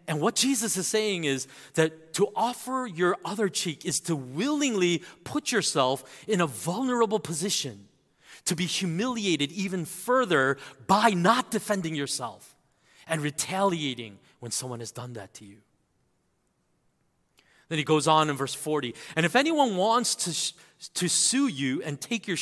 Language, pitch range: English, 140-210 Hz